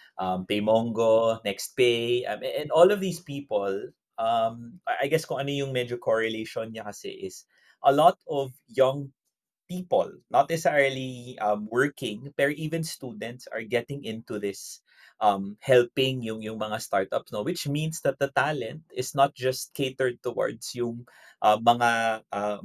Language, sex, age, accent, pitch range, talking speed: Filipino, male, 20-39, native, 115-160 Hz, 150 wpm